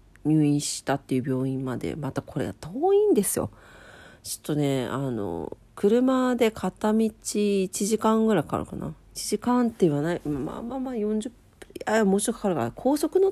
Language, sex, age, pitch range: Japanese, female, 40-59, 140-195 Hz